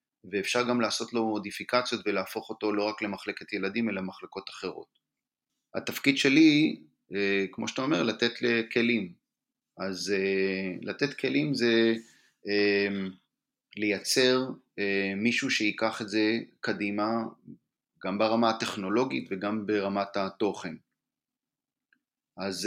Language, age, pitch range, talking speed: Hebrew, 30-49, 100-115 Hz, 100 wpm